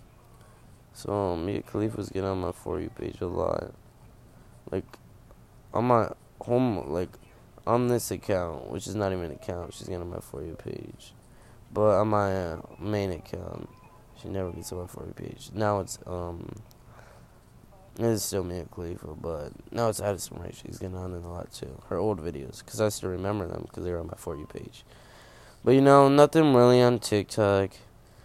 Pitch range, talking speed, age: 95-120 Hz, 185 wpm, 20-39